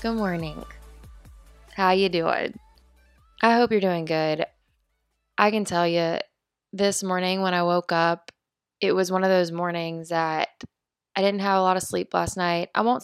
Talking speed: 175 wpm